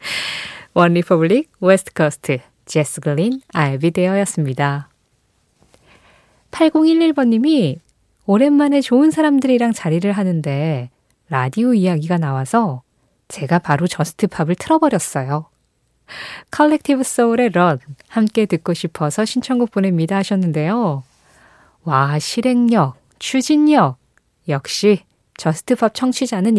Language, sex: Korean, female